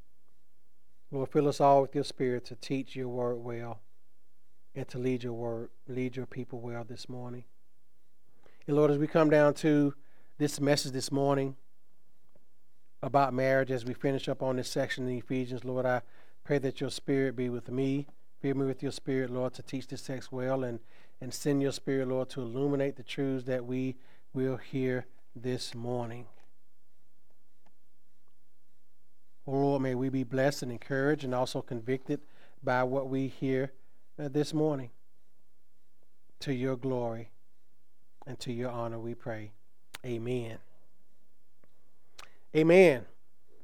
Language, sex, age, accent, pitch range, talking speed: English, male, 40-59, American, 125-145 Hz, 150 wpm